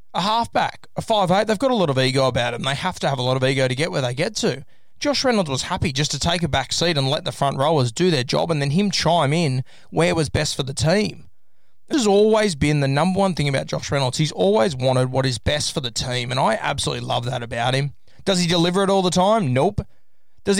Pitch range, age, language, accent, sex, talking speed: 135-215 Hz, 20-39, English, Australian, male, 270 wpm